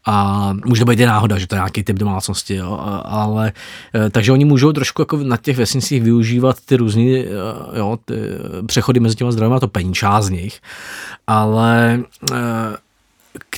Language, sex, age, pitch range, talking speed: Czech, male, 20-39, 110-130 Hz, 150 wpm